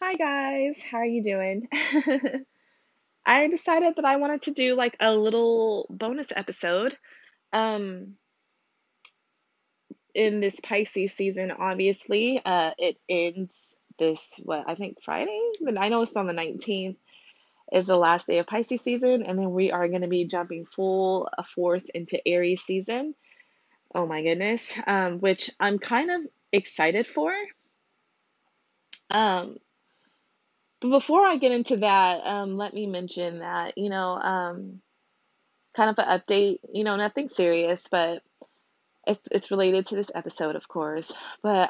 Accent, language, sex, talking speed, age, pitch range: American, English, female, 145 wpm, 20-39, 175-230 Hz